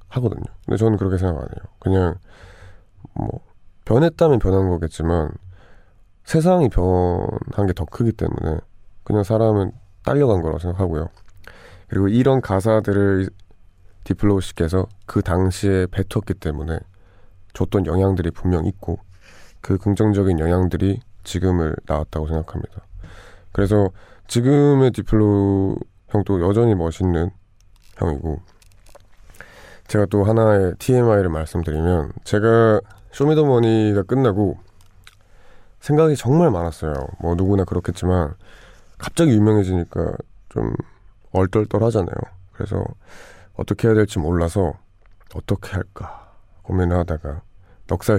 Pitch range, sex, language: 90-105 Hz, male, Korean